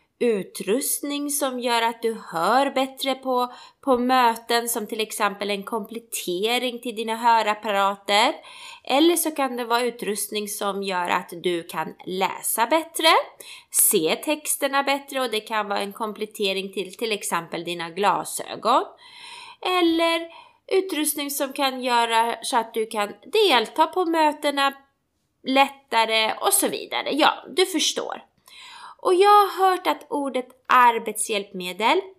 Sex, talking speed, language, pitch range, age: female, 130 wpm, Swedish, 215-335 Hz, 20-39